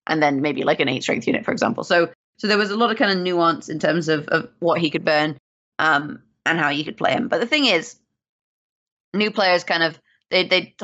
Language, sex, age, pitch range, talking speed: English, female, 20-39, 155-190 Hz, 250 wpm